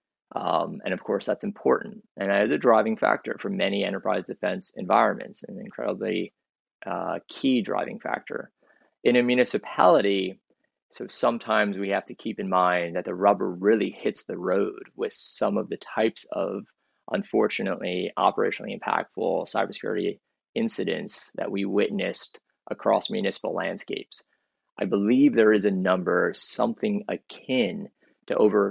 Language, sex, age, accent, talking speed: English, male, 20-39, American, 140 wpm